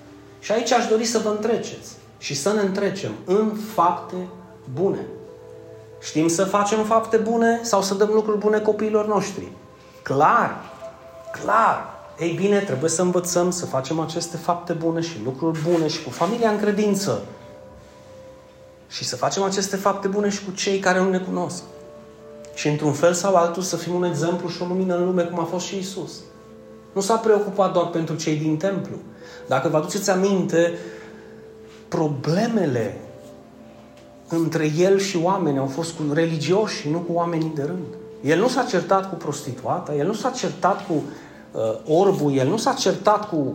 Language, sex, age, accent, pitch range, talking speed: Romanian, male, 30-49, native, 145-195 Hz, 170 wpm